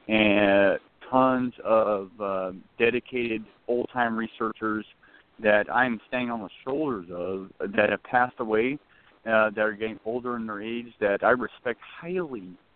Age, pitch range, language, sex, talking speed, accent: 40-59, 105-125 Hz, English, male, 150 wpm, American